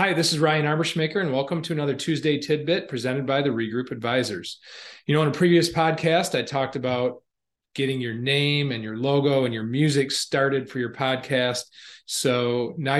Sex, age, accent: male, 40-59, American